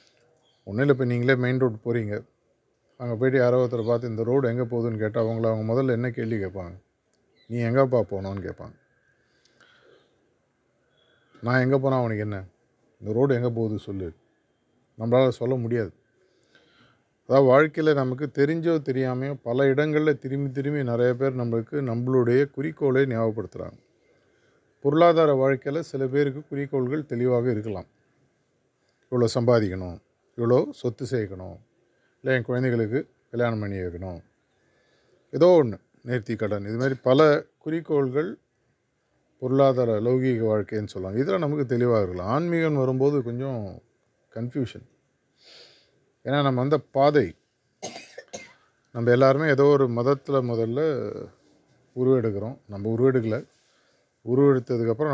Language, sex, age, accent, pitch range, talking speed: Tamil, male, 30-49, native, 115-135 Hz, 115 wpm